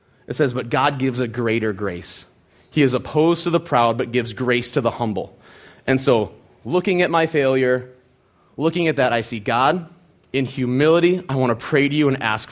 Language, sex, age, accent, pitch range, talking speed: English, male, 30-49, American, 120-160 Hz, 200 wpm